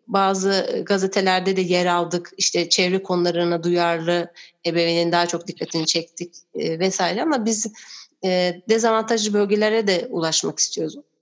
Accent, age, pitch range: native, 30-49, 175-210 Hz